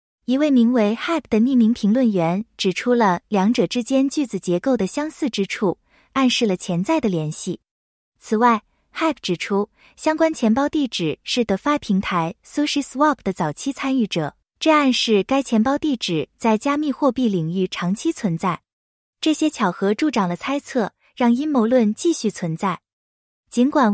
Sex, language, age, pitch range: female, English, 20-39, 195-270 Hz